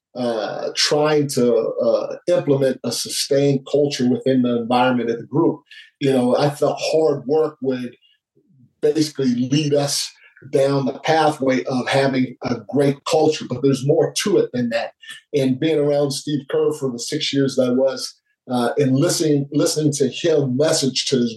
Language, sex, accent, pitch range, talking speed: English, male, American, 130-155 Hz, 170 wpm